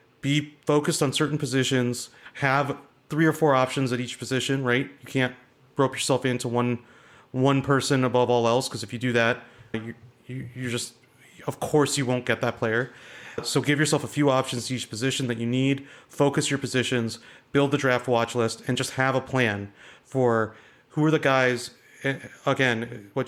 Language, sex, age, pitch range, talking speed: English, male, 30-49, 120-135 Hz, 190 wpm